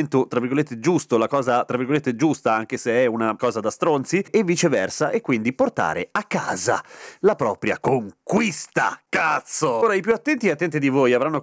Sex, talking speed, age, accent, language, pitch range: male, 185 wpm, 30-49, native, Italian, 125-190 Hz